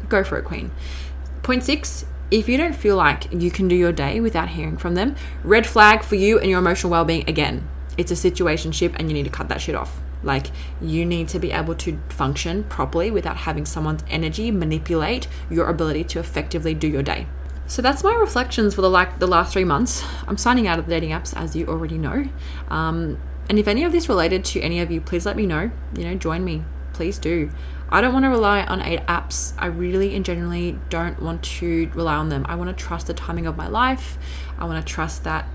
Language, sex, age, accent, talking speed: English, female, 20-39, Australian, 230 wpm